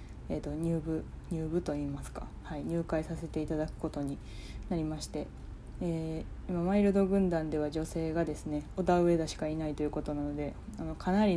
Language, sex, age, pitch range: Japanese, female, 20-39, 150-170 Hz